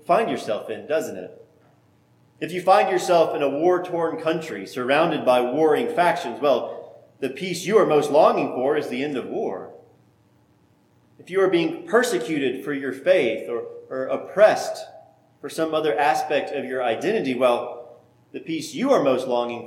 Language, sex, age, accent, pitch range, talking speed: English, male, 30-49, American, 120-180 Hz, 170 wpm